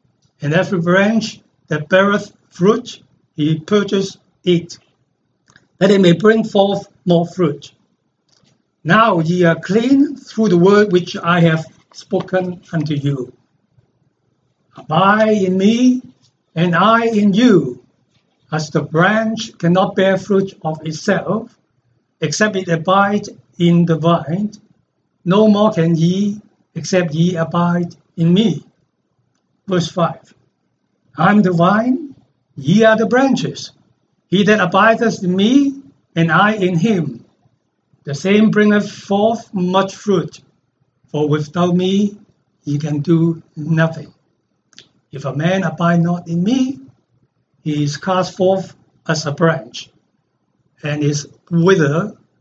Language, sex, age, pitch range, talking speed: English, male, 60-79, 155-200 Hz, 125 wpm